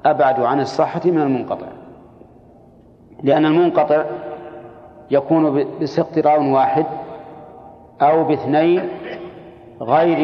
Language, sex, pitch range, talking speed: Arabic, male, 140-165 Hz, 80 wpm